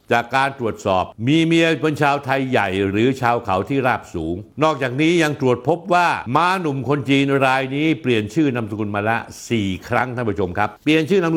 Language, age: Thai, 60-79